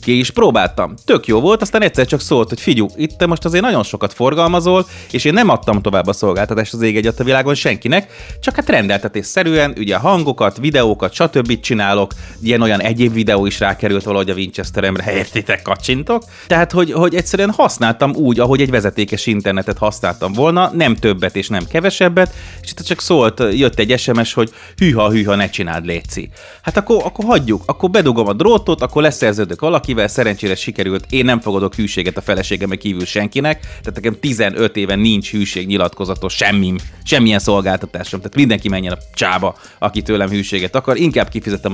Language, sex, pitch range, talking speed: Hungarian, male, 95-125 Hz, 175 wpm